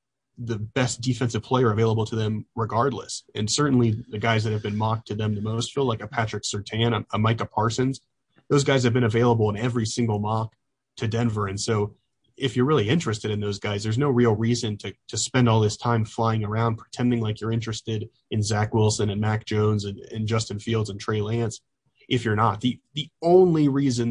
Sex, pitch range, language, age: male, 110-125 Hz, English, 30-49